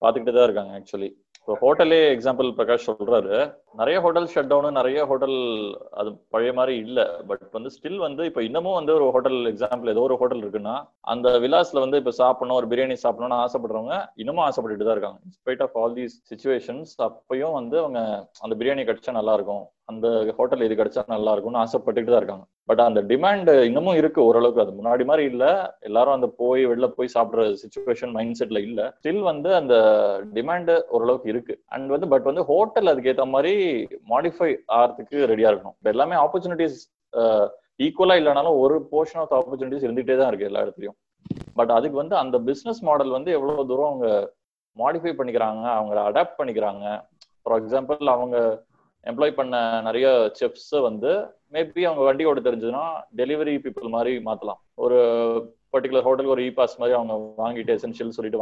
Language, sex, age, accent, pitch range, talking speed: Tamil, male, 20-39, native, 115-165 Hz, 80 wpm